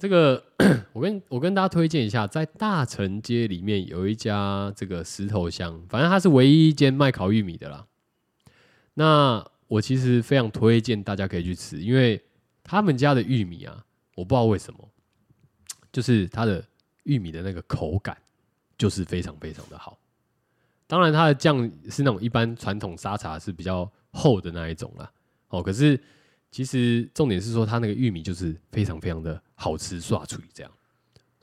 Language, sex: Chinese, male